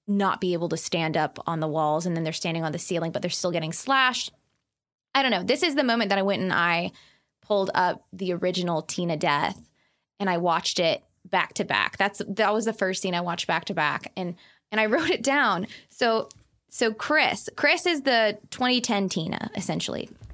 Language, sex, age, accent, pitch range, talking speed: English, female, 20-39, American, 180-235 Hz, 210 wpm